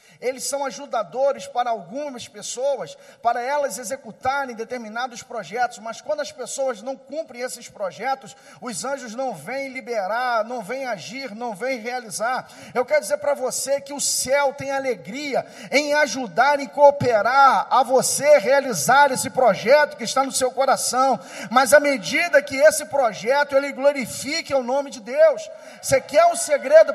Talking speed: 160 wpm